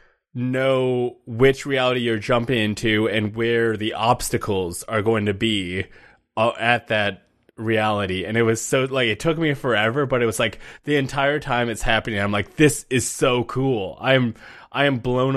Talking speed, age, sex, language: 175 wpm, 20-39, male, English